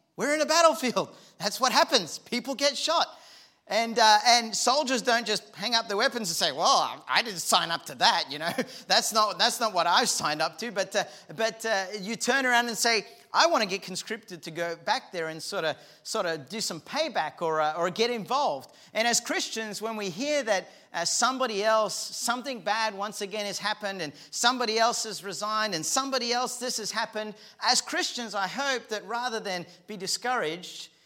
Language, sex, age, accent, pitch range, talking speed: English, male, 40-59, Australian, 175-230 Hz, 205 wpm